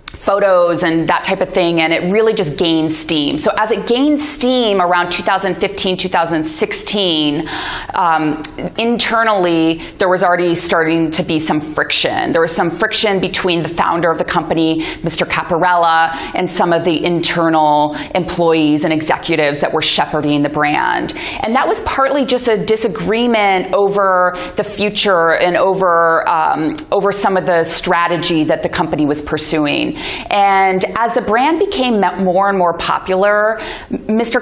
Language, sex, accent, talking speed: English, female, American, 155 wpm